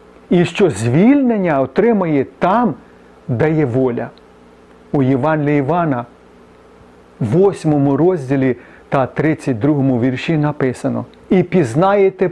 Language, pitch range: Ukrainian, 130-165 Hz